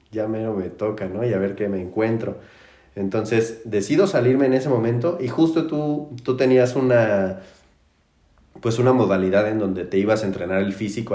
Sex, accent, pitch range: male, Mexican, 95-120 Hz